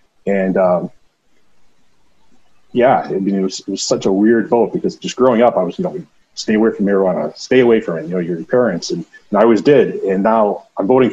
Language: English